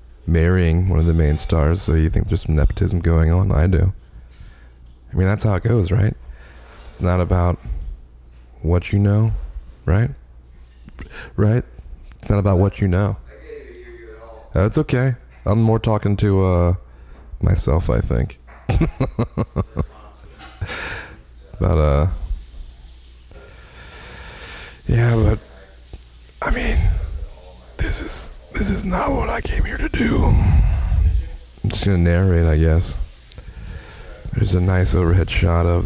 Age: 30-49